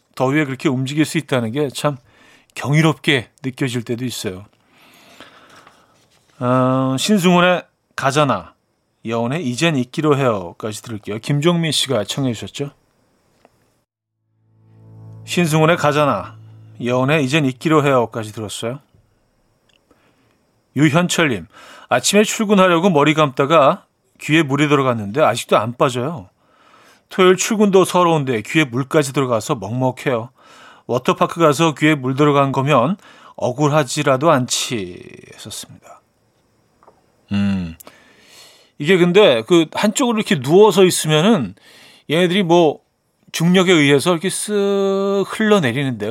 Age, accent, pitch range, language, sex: 40-59, native, 120-170 Hz, Korean, male